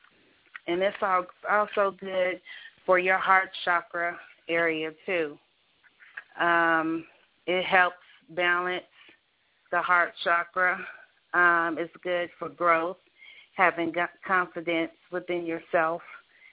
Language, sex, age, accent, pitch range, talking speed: English, female, 40-59, American, 170-190 Hz, 95 wpm